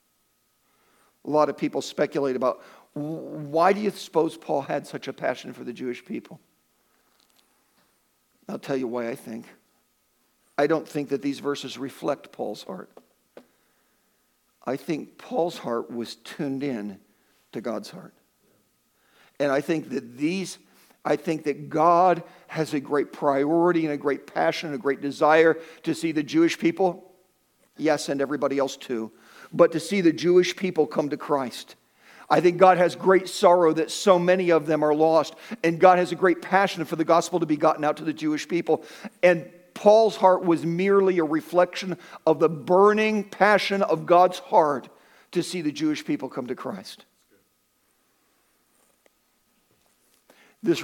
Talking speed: 160 wpm